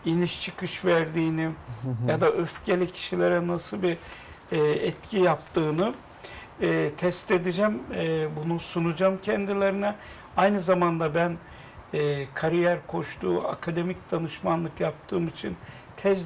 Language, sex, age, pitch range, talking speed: Turkish, male, 60-79, 160-190 Hz, 95 wpm